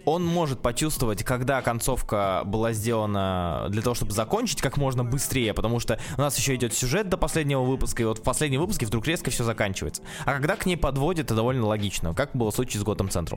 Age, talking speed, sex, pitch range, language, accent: 20-39, 210 wpm, male, 105-135 Hz, Russian, native